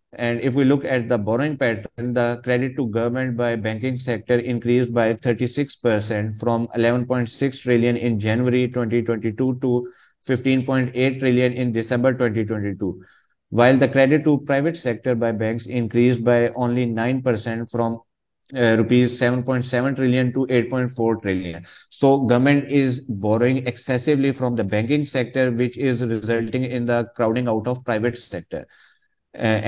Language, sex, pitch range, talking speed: Urdu, male, 115-130 Hz, 145 wpm